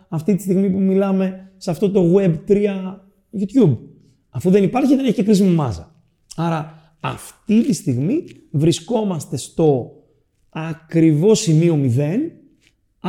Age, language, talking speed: 30-49, Greek, 120 wpm